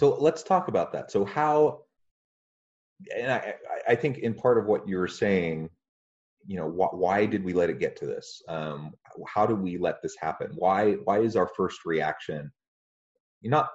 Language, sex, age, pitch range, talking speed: English, male, 30-49, 80-115 Hz, 180 wpm